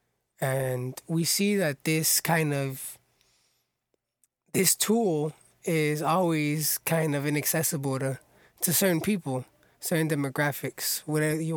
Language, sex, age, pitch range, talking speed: English, male, 20-39, 140-165 Hz, 115 wpm